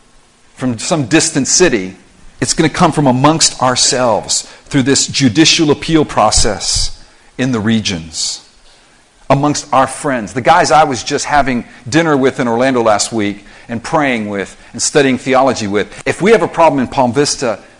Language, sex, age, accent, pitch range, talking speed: English, male, 50-69, American, 105-145 Hz, 165 wpm